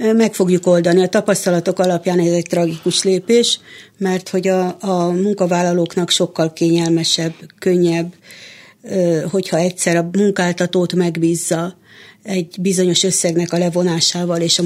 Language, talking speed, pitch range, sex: Hungarian, 125 wpm, 175-200 Hz, female